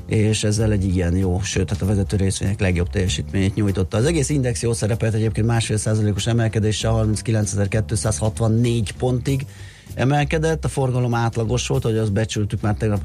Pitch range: 105-125 Hz